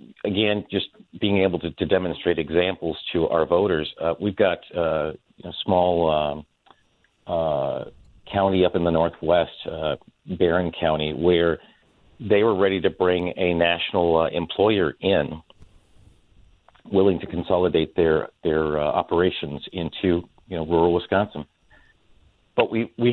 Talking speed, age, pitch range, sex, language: 145 wpm, 50-69, 80-90 Hz, male, English